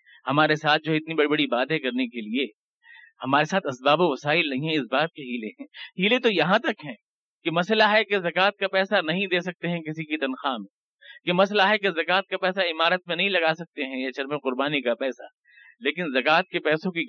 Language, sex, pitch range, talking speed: Urdu, male, 155-195 Hz, 225 wpm